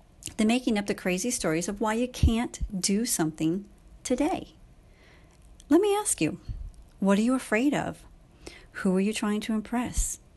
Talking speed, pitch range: 160 wpm, 180-245 Hz